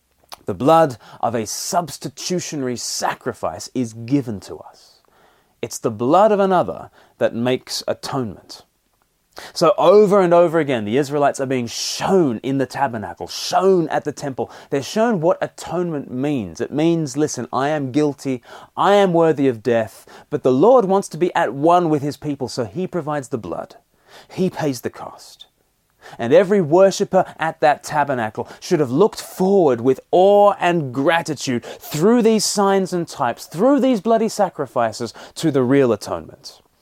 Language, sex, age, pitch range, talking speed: English, male, 30-49, 125-175 Hz, 160 wpm